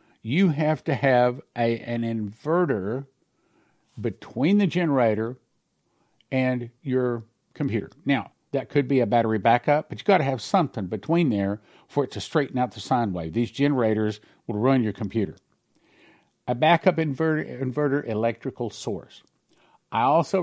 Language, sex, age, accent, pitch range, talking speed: English, male, 50-69, American, 115-160 Hz, 145 wpm